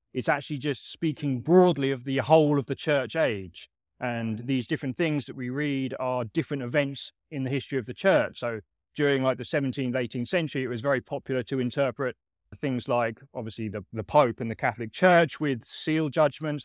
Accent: British